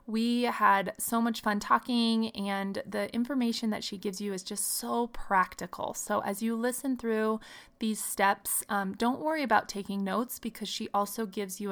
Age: 20-39